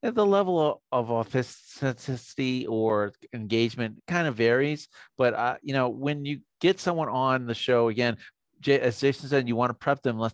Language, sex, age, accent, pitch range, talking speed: English, male, 50-69, American, 115-140 Hz, 185 wpm